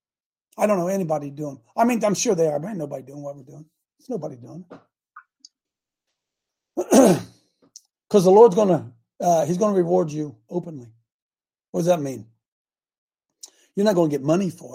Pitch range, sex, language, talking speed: 150-220 Hz, male, English, 180 wpm